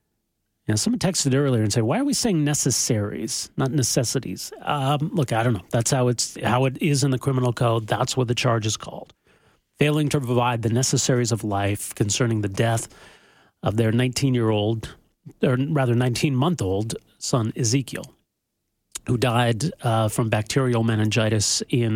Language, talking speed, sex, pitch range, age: English, 170 wpm, male, 110-135 Hz, 40-59